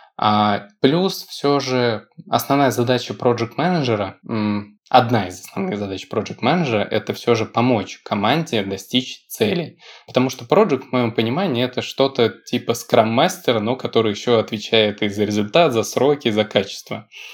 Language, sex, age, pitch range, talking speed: Russian, male, 20-39, 105-125 Hz, 140 wpm